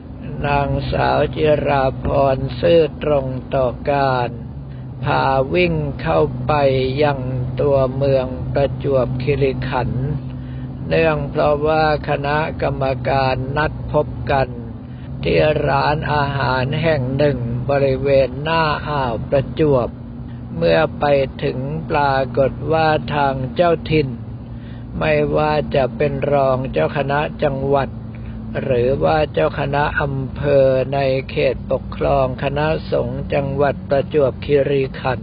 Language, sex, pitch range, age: Thai, male, 130-145 Hz, 60-79